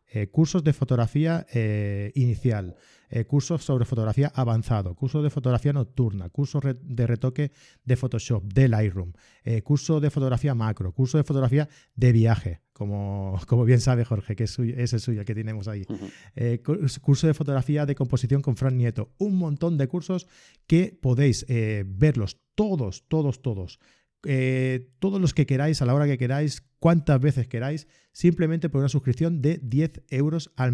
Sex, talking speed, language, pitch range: male, 170 wpm, Spanish, 110-145 Hz